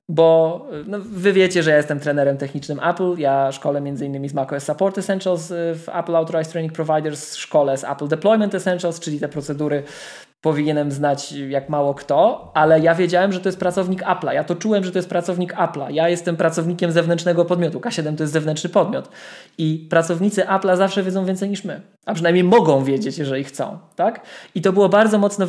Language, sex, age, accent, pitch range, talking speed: Polish, male, 20-39, native, 155-190 Hz, 195 wpm